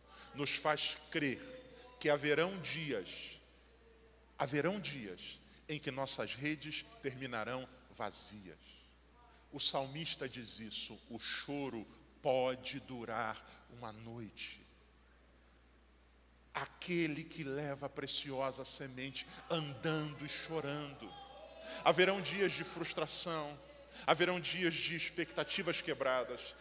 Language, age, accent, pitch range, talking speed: Portuguese, 40-59, Brazilian, 140-205 Hz, 95 wpm